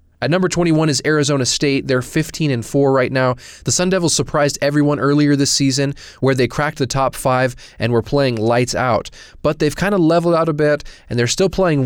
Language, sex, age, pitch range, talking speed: English, male, 20-39, 120-145 Hz, 220 wpm